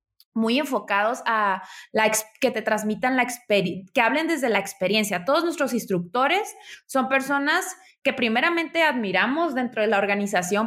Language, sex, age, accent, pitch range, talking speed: Spanish, female, 20-39, Mexican, 200-255 Hz, 150 wpm